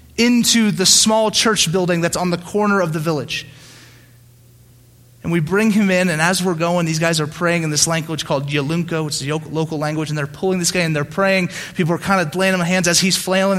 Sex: male